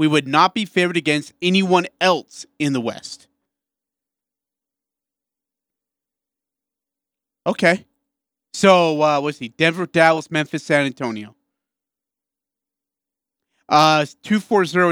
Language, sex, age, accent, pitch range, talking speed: English, male, 30-49, American, 145-190 Hz, 100 wpm